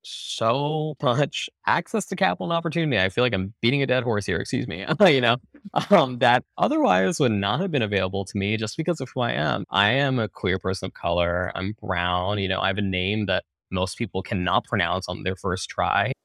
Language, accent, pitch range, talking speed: English, American, 90-115 Hz, 220 wpm